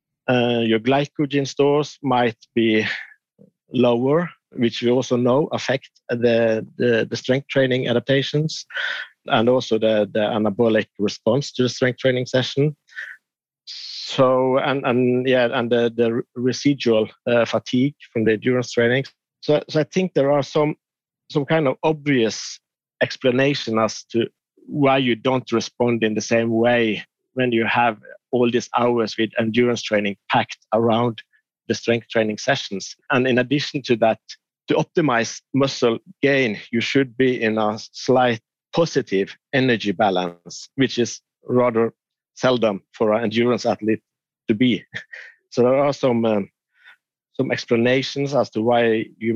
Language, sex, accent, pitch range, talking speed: English, male, Norwegian, 115-135 Hz, 145 wpm